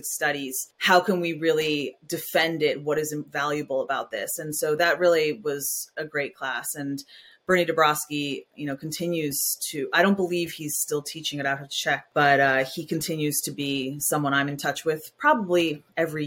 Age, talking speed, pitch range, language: 30-49, 185 wpm, 145-175 Hz, English